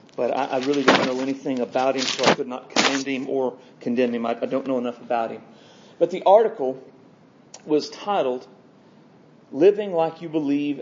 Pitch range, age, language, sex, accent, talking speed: 140-230 Hz, 40-59, English, male, American, 175 wpm